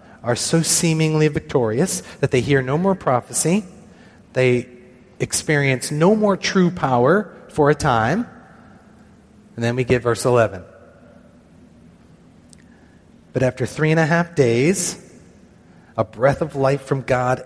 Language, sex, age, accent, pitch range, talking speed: English, male, 30-49, American, 115-145 Hz, 130 wpm